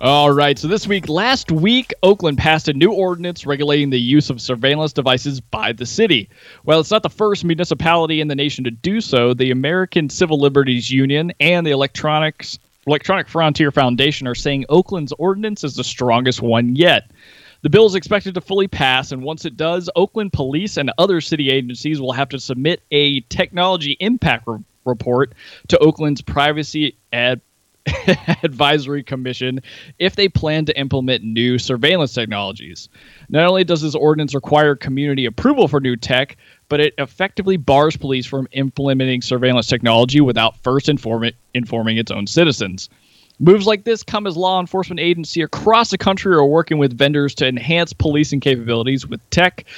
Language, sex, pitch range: English, male, 130-170 Hz